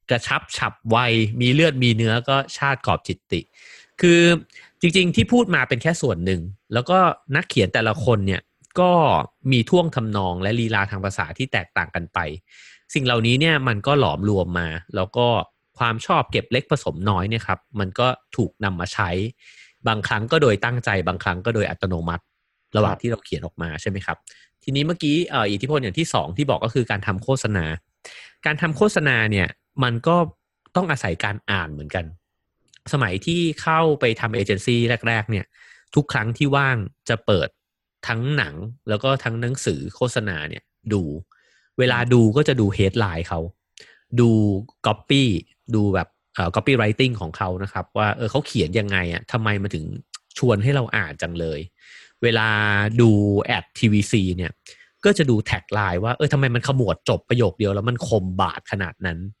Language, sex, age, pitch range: English, male, 30-49, 95-130 Hz